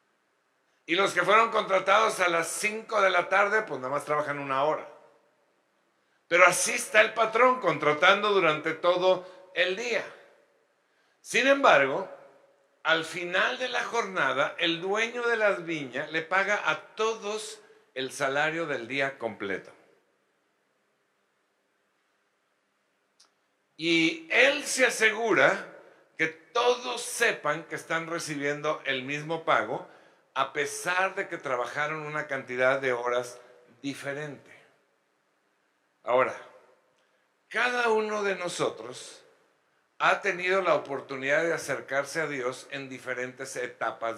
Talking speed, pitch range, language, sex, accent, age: 120 wpm, 140-210 Hz, Spanish, male, Mexican, 60-79